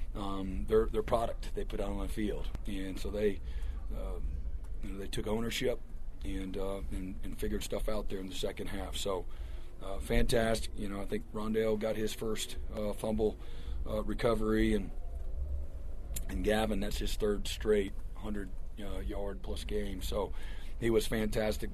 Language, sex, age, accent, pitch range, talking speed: English, male, 40-59, American, 90-105 Hz, 170 wpm